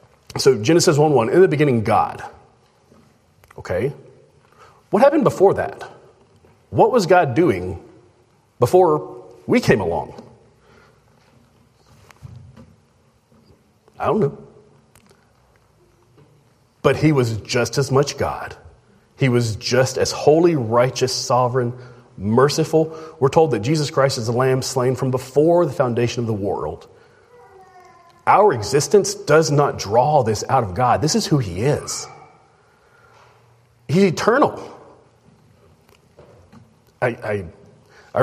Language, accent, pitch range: English, American, 115-160 Hz